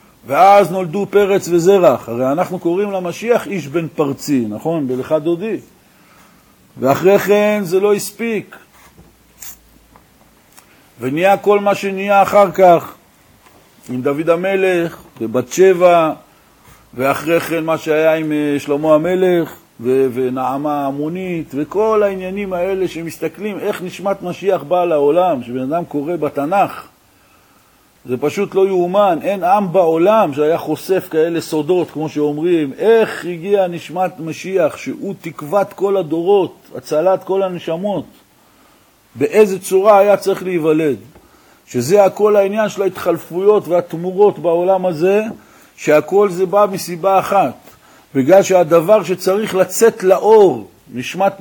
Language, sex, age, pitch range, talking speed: Hebrew, male, 50-69, 160-200 Hz, 120 wpm